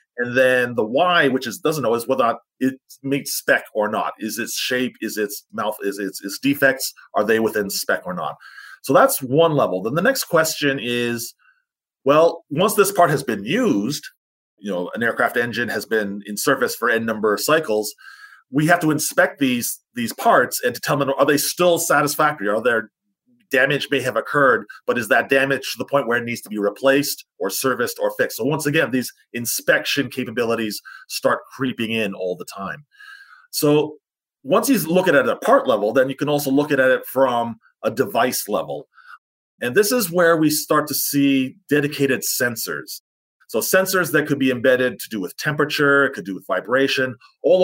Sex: male